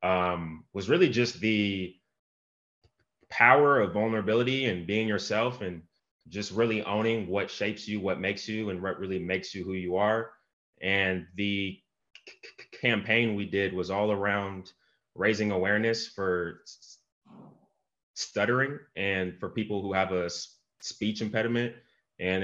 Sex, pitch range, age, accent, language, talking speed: male, 90-105 Hz, 20-39, American, English, 135 wpm